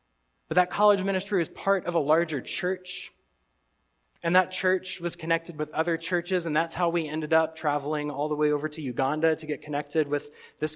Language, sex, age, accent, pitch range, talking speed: English, male, 20-39, American, 135-185 Hz, 200 wpm